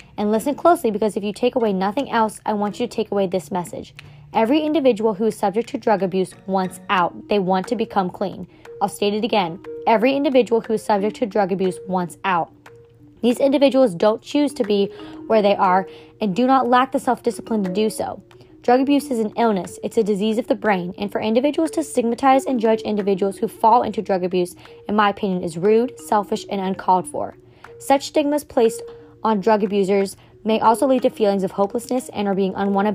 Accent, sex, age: American, female, 20-39